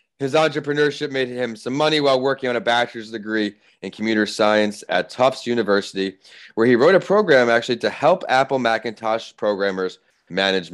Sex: male